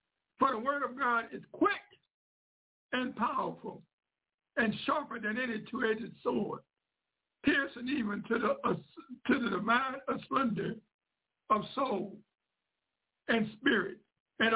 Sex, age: male, 60-79